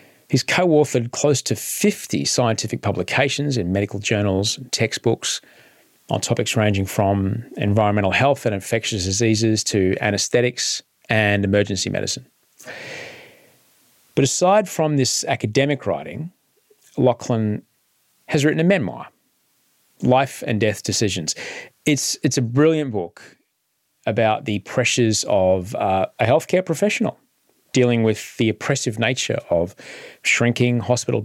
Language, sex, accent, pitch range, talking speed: English, male, Australian, 105-140 Hz, 120 wpm